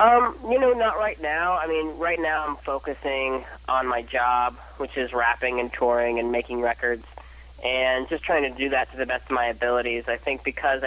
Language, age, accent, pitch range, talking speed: English, 30-49, American, 120-135 Hz, 210 wpm